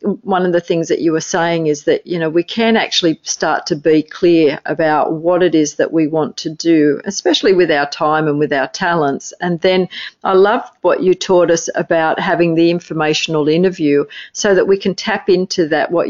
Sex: female